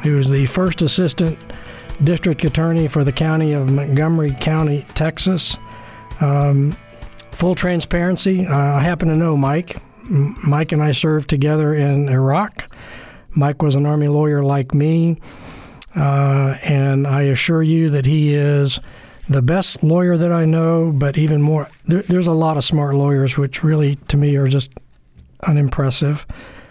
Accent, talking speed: American, 155 wpm